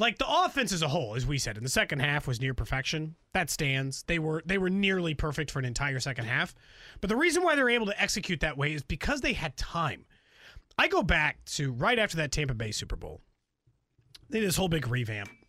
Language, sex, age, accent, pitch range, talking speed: English, male, 30-49, American, 165-270 Hz, 240 wpm